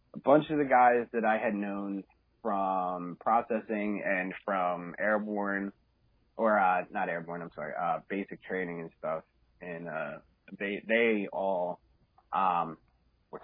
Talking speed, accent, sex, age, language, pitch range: 140 wpm, American, male, 30-49, English, 90-110 Hz